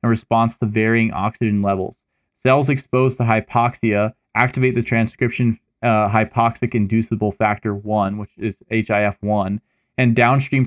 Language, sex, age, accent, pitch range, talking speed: English, male, 20-39, American, 110-125 Hz, 125 wpm